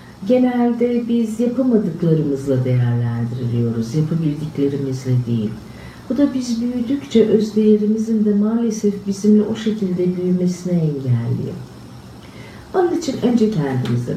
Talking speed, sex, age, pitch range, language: 95 wpm, female, 50-69, 180-235 Hz, Turkish